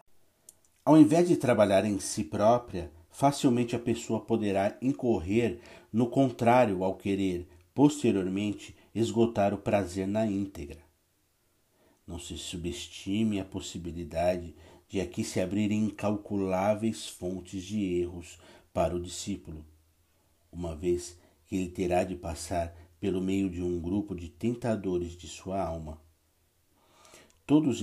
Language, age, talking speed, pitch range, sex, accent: Portuguese, 50-69, 120 wpm, 85-110 Hz, male, Brazilian